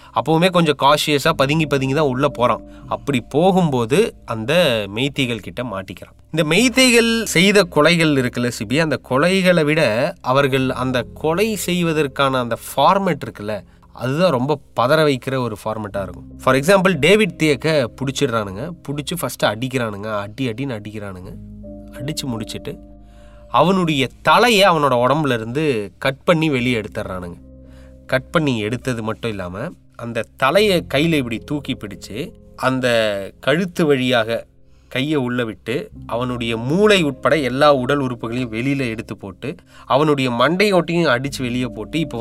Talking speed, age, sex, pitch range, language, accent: 130 wpm, 20-39, male, 115-155 Hz, Tamil, native